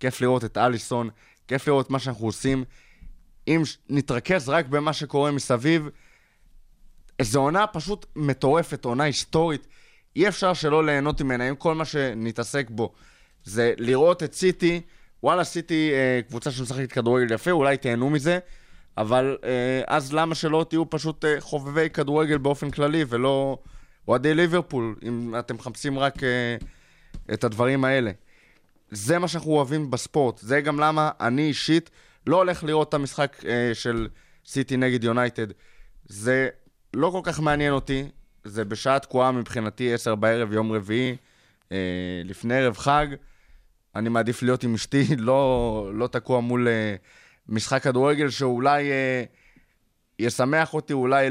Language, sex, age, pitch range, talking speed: Hebrew, male, 20-39, 120-150 Hz, 140 wpm